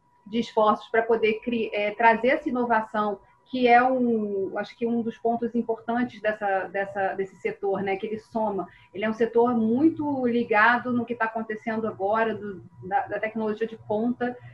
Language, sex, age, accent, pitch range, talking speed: Portuguese, female, 30-49, Brazilian, 220-255 Hz, 180 wpm